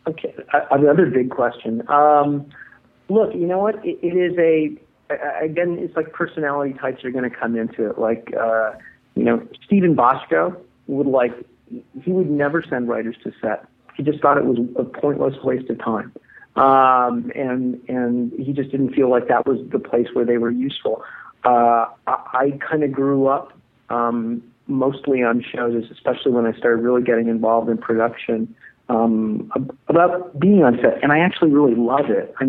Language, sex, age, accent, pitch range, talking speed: English, male, 40-59, American, 120-145 Hz, 180 wpm